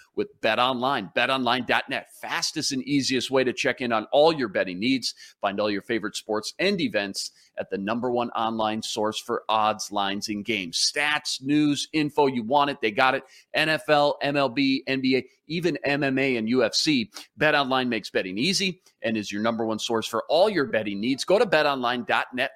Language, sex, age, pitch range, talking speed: English, male, 40-59, 110-145 Hz, 180 wpm